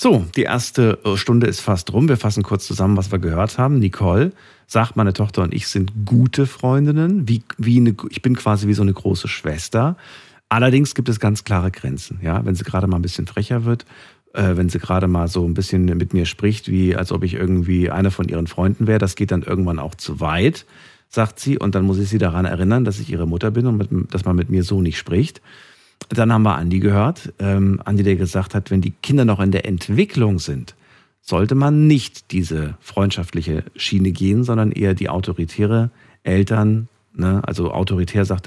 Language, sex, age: German, male, 50-69